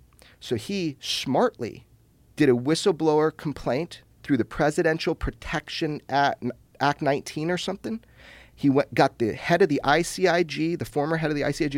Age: 30-49